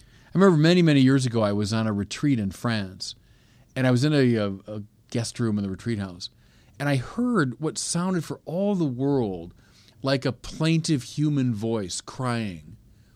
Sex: male